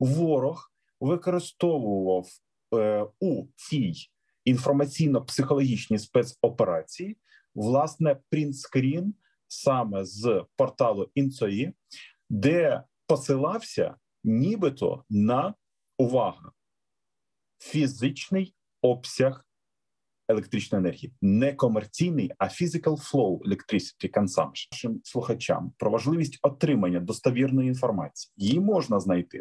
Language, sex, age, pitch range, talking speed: Ukrainian, male, 30-49, 120-160 Hz, 80 wpm